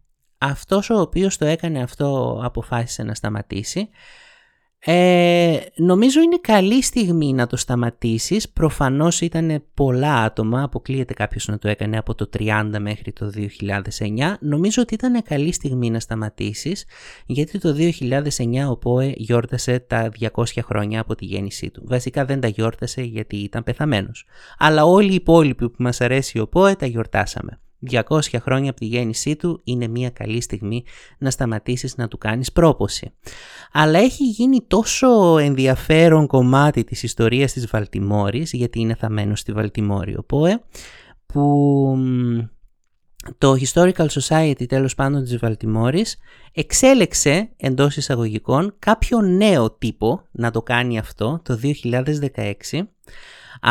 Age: 30-49